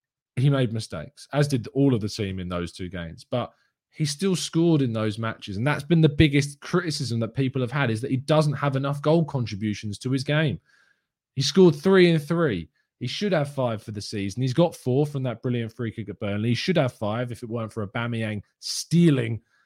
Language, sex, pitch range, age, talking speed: English, male, 115-155 Hz, 20-39, 225 wpm